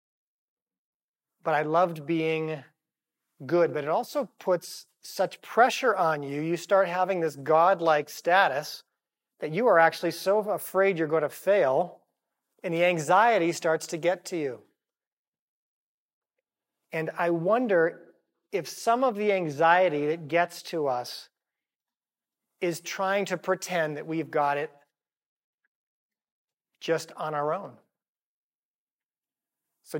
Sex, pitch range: male, 155-180 Hz